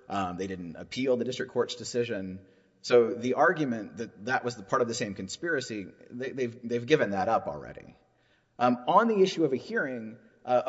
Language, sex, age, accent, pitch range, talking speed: English, male, 30-49, American, 105-130 Hz, 195 wpm